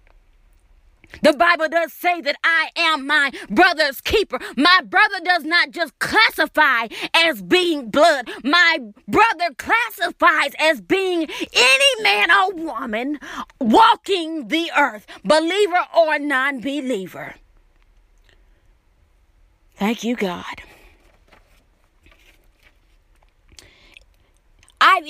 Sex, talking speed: female, 90 wpm